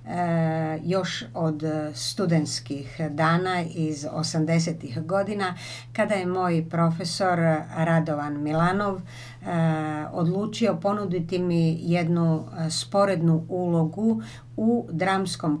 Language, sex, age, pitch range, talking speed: Croatian, female, 50-69, 155-190 Hz, 85 wpm